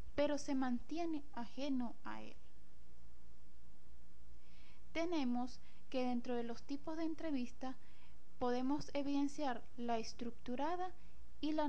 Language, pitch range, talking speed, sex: Spanish, 230-290 Hz, 105 wpm, female